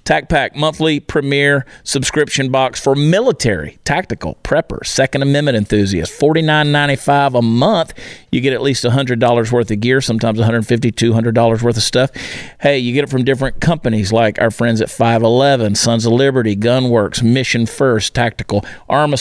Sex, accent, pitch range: male, American, 115-140 Hz